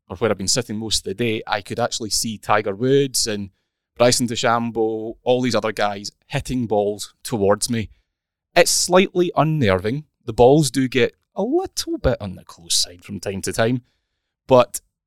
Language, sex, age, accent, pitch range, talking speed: English, male, 20-39, British, 105-130 Hz, 175 wpm